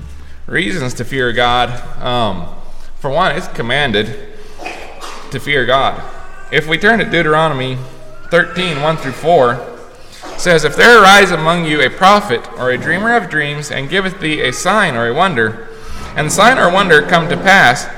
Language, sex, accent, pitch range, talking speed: English, male, American, 115-155 Hz, 165 wpm